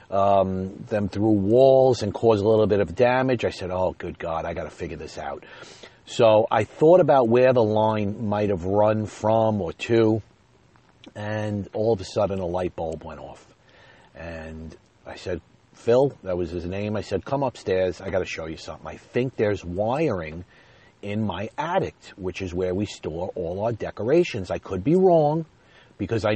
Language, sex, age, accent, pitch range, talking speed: English, male, 40-59, American, 95-125 Hz, 190 wpm